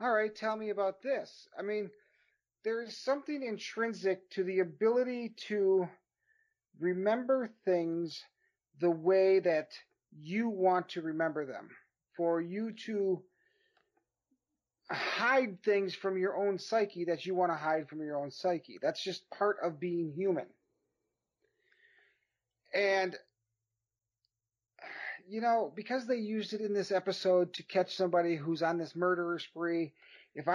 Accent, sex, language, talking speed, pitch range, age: American, male, English, 135 wpm, 165-210 Hz, 40-59